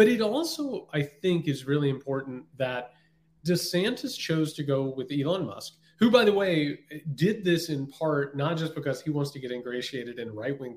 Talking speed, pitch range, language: 195 wpm, 140-180 Hz, English